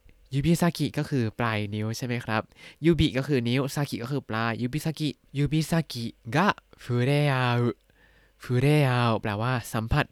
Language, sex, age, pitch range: Thai, male, 20-39, 115-155 Hz